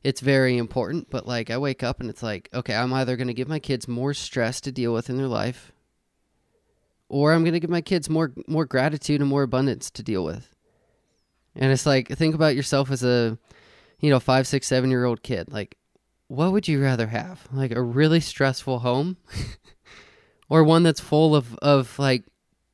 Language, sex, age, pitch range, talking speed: English, male, 20-39, 115-140 Hz, 200 wpm